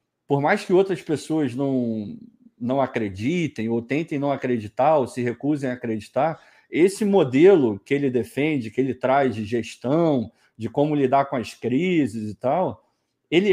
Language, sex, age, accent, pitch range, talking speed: Portuguese, male, 40-59, Brazilian, 120-185 Hz, 160 wpm